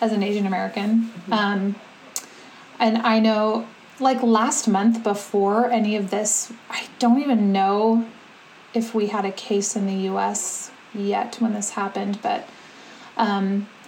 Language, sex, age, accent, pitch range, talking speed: English, female, 30-49, American, 205-235 Hz, 135 wpm